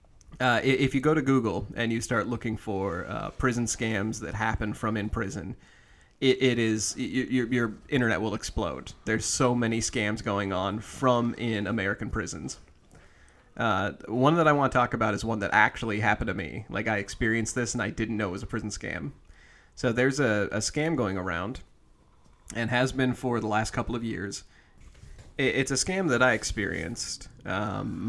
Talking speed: 190 wpm